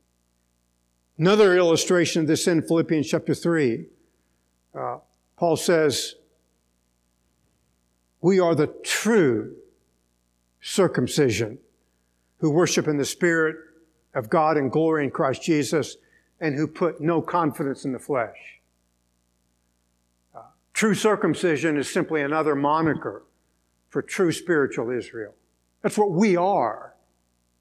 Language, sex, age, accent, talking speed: English, male, 60-79, American, 110 wpm